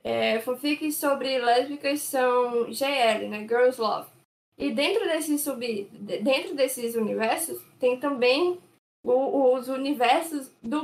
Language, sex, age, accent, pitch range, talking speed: Portuguese, female, 10-29, Brazilian, 235-295 Hz, 120 wpm